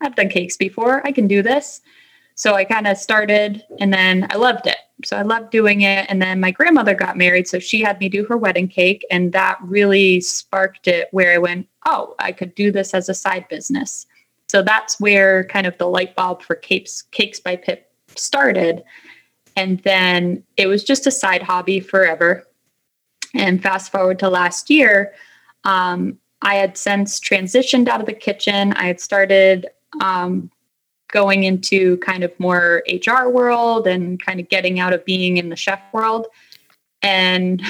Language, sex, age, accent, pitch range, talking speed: English, female, 20-39, American, 180-210 Hz, 180 wpm